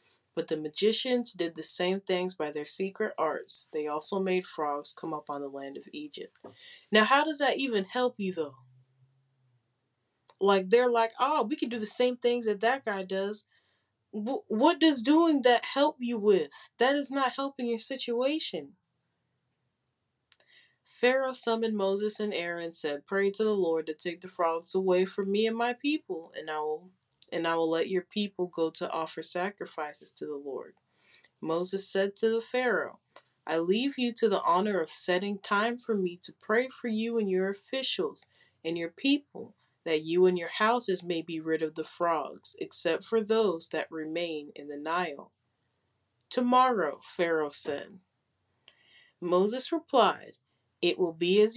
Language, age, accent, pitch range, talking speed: English, 20-39, American, 160-245 Hz, 170 wpm